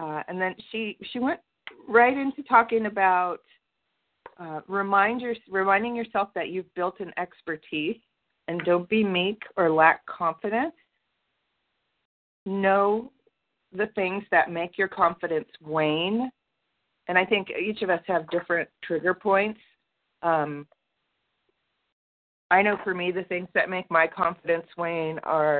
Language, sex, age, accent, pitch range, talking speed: English, female, 40-59, American, 160-200 Hz, 135 wpm